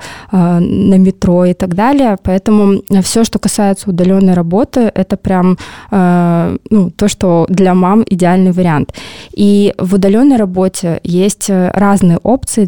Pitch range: 180-205 Hz